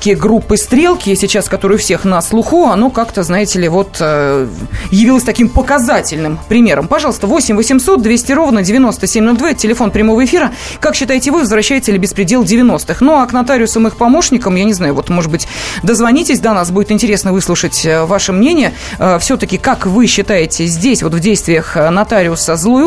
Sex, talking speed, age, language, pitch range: female, 165 wpm, 20-39, Russian, 195-260 Hz